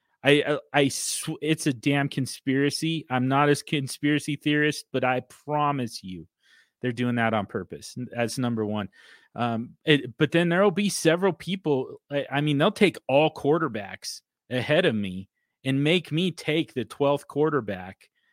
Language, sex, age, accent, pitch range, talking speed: English, male, 30-49, American, 125-150 Hz, 160 wpm